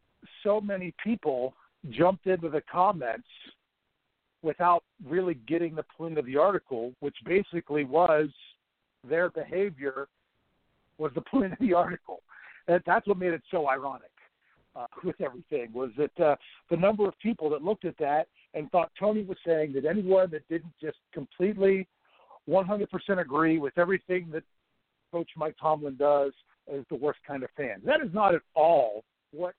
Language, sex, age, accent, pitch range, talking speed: English, male, 50-69, American, 155-195 Hz, 160 wpm